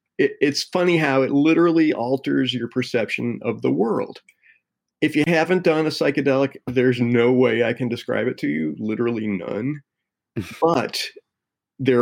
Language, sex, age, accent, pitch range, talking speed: English, male, 40-59, American, 110-140 Hz, 150 wpm